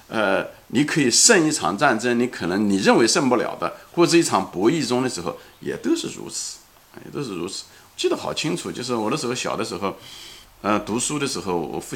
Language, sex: Chinese, male